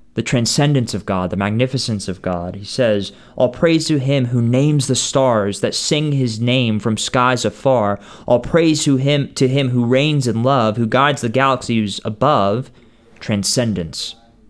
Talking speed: 170 wpm